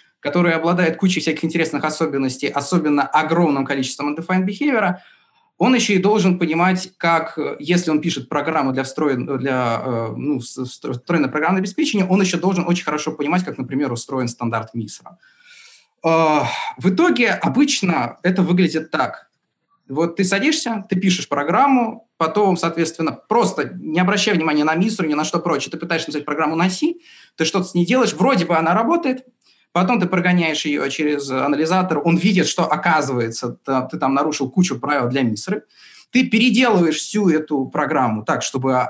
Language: Russian